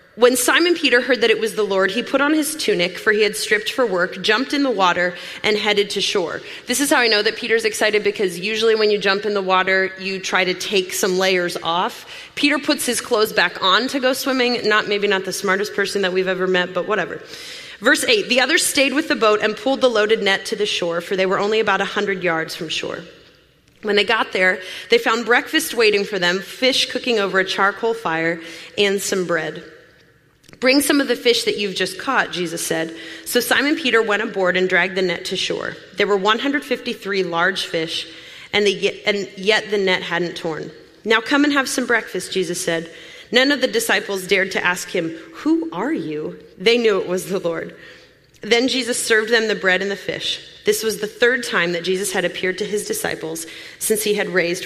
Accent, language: American, English